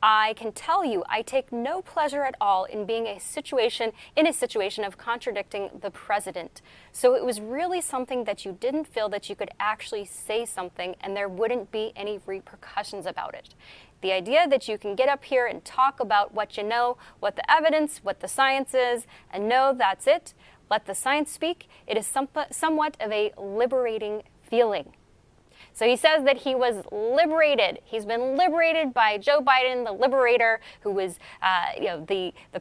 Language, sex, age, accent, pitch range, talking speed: English, female, 20-39, American, 205-285 Hz, 190 wpm